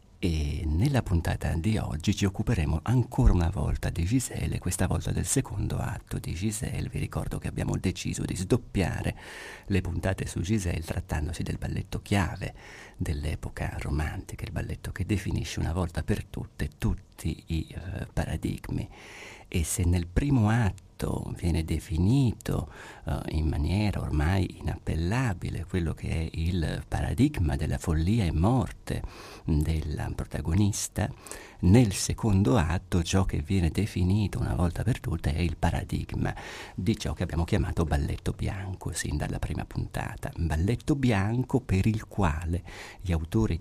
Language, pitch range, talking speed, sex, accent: Italian, 85-110 Hz, 140 wpm, male, native